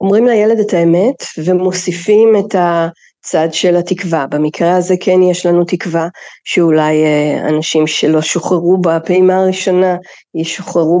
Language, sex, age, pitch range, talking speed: Hebrew, female, 40-59, 165-195 Hz, 120 wpm